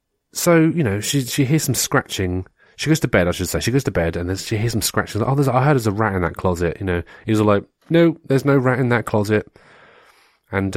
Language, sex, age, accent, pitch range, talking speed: English, male, 30-49, British, 95-145 Hz, 280 wpm